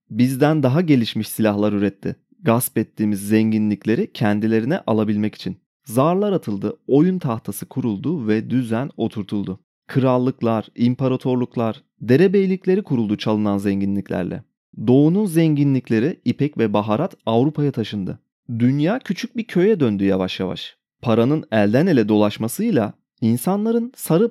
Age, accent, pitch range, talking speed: 30-49, native, 110-160 Hz, 110 wpm